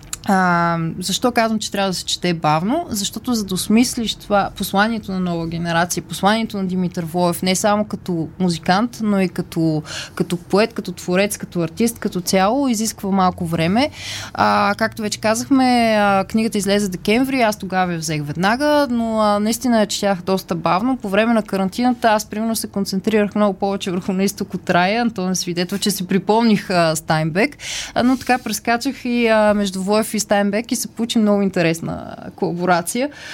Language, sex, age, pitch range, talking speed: Bulgarian, female, 20-39, 180-225 Hz, 175 wpm